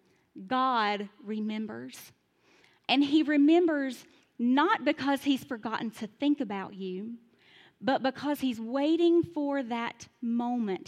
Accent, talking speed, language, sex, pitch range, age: American, 110 wpm, English, female, 205-270 Hz, 40-59